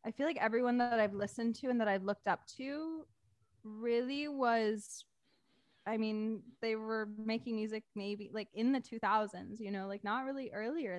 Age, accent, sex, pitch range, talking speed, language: 10-29, American, female, 190-240 Hz, 180 wpm, English